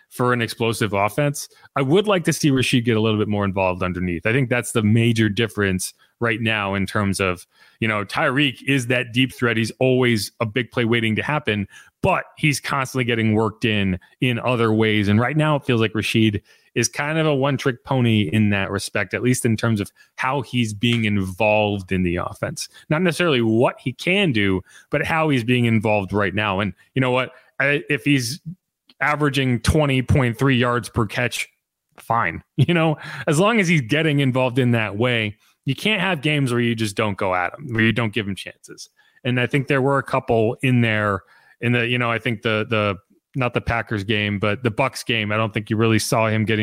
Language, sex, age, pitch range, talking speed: English, male, 30-49, 105-135 Hz, 215 wpm